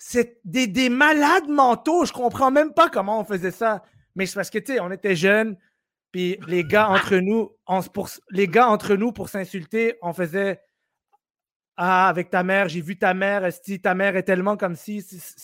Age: 30-49